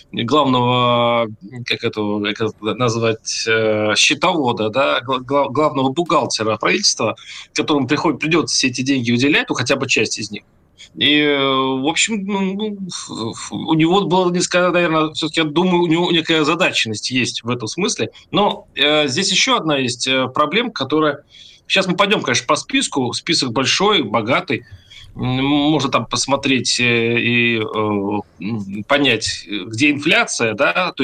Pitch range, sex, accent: 125-160 Hz, male, native